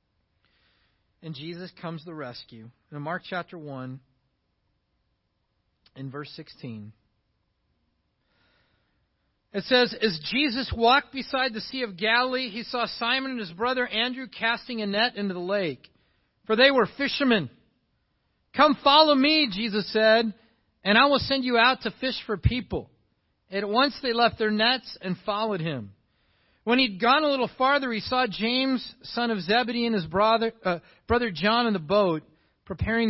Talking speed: 160 wpm